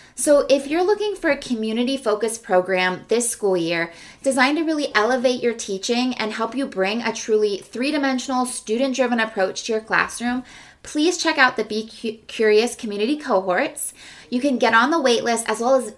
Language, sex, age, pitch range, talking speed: English, female, 20-39, 205-260 Hz, 175 wpm